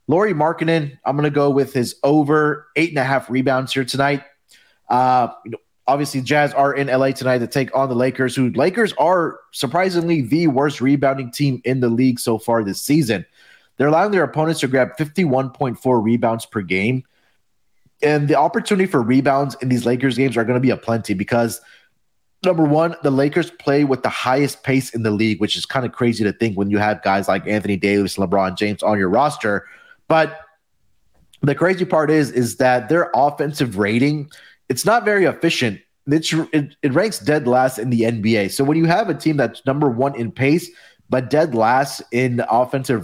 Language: English